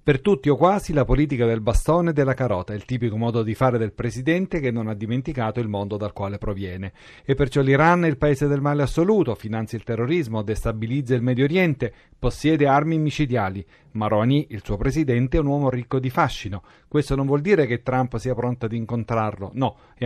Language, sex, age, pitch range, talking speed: Italian, male, 40-59, 110-140 Hz, 205 wpm